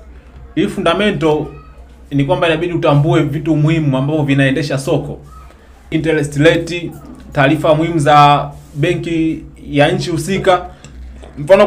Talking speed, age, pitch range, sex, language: 105 wpm, 20-39, 130-165 Hz, male, Swahili